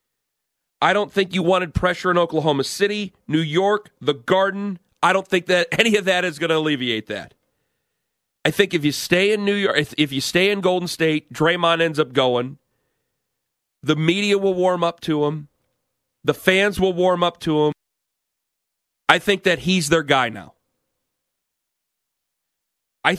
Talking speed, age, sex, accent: 165 wpm, 40-59, male, American